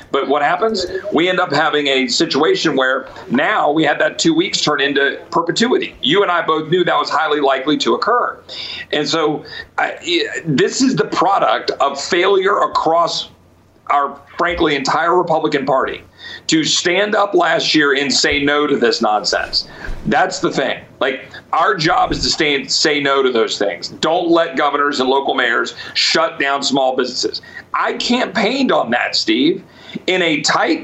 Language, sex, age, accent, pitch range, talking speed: English, male, 40-59, American, 150-215 Hz, 170 wpm